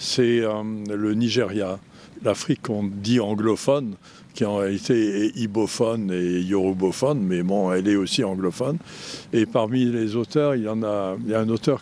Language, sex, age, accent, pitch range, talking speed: French, male, 60-79, French, 100-125 Hz, 175 wpm